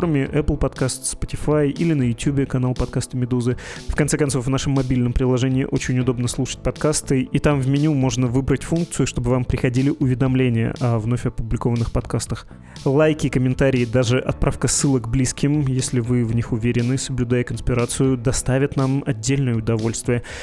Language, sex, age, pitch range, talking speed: Russian, male, 20-39, 120-140 Hz, 155 wpm